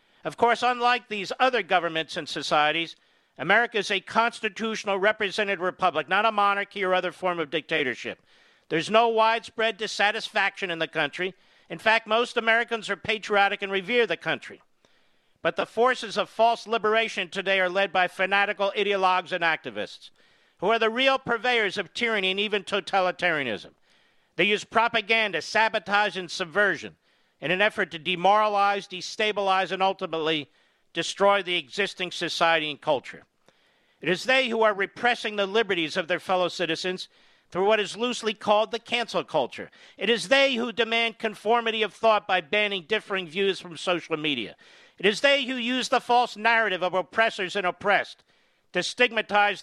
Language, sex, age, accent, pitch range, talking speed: English, male, 50-69, American, 180-225 Hz, 160 wpm